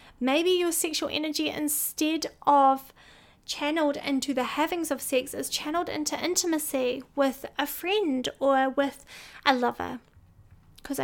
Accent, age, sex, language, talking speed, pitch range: Australian, 30-49, female, English, 130 wpm, 255-285 Hz